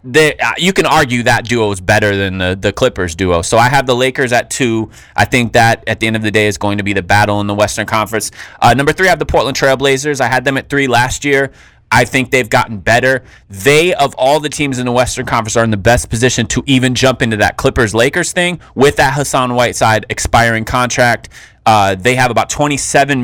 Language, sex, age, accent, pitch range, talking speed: English, male, 20-39, American, 105-125 Hz, 240 wpm